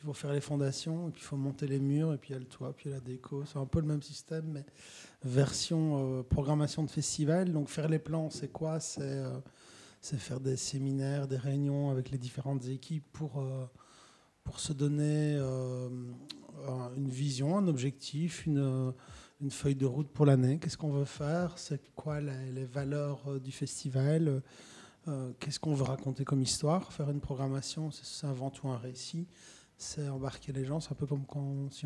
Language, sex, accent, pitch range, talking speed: French, male, French, 135-150 Hz, 205 wpm